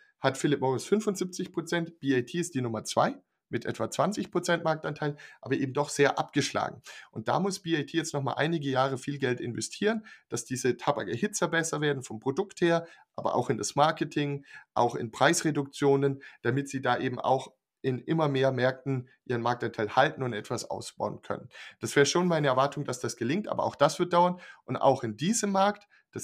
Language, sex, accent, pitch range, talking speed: German, male, German, 130-175 Hz, 185 wpm